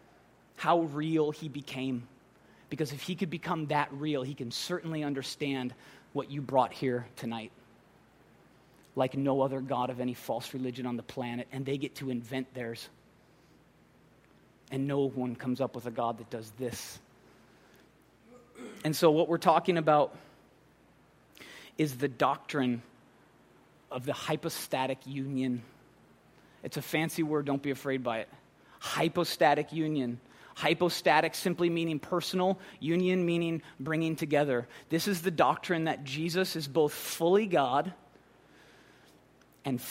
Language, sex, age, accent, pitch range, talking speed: English, male, 30-49, American, 125-160 Hz, 135 wpm